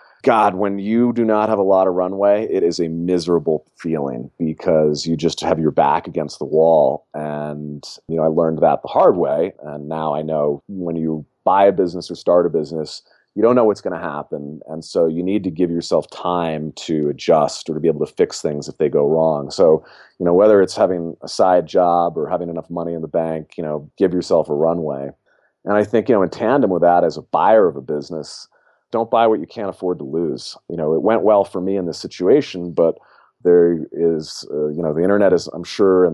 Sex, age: male, 30-49